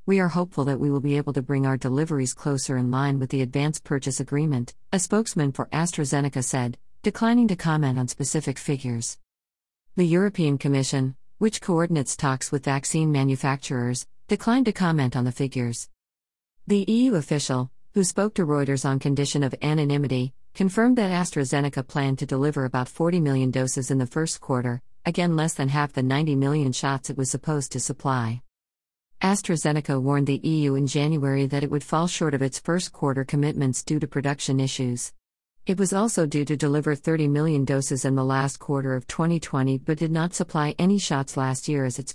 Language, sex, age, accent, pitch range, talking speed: English, female, 50-69, American, 130-155 Hz, 180 wpm